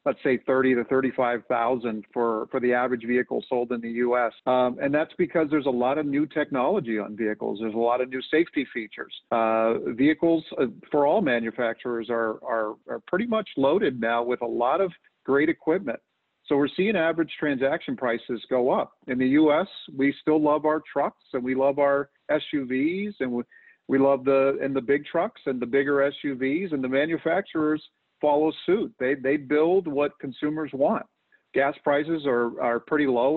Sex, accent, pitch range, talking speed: male, American, 125-155 Hz, 190 wpm